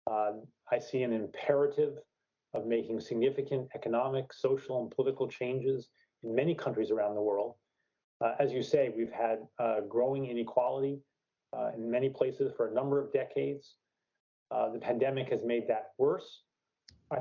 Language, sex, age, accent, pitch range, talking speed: English, male, 30-49, American, 115-185 Hz, 155 wpm